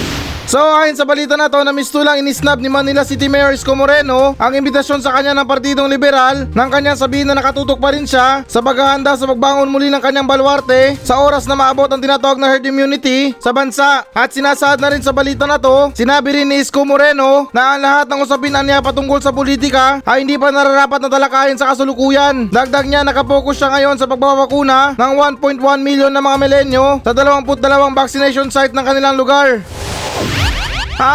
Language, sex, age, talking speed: Filipino, male, 20-39, 195 wpm